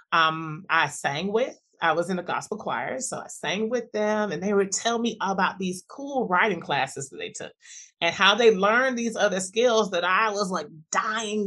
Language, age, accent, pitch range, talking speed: English, 30-49, American, 180-255 Hz, 210 wpm